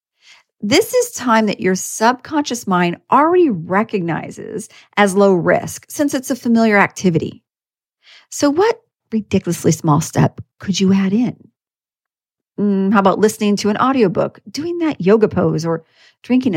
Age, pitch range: 40-59, 180-245 Hz